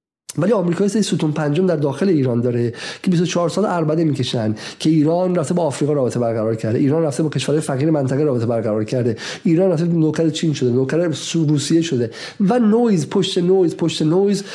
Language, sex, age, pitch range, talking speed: Persian, male, 50-69, 130-160 Hz, 190 wpm